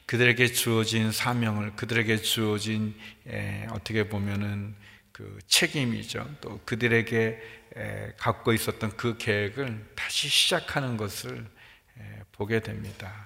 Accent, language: native, Korean